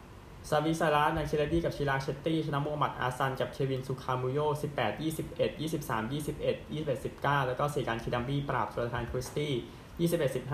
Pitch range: 110-140 Hz